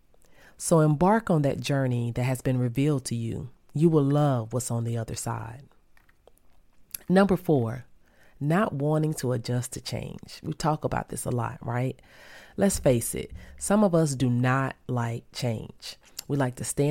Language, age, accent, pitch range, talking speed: English, 30-49, American, 125-165 Hz, 170 wpm